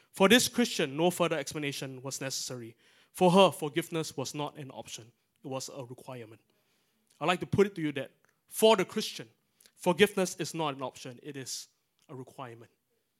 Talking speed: 175 wpm